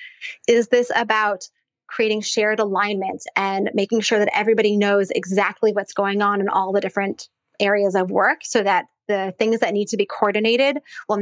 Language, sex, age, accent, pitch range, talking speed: English, female, 20-39, American, 205-260 Hz, 175 wpm